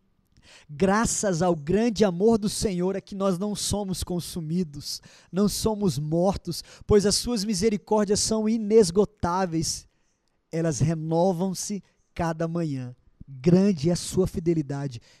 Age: 20-39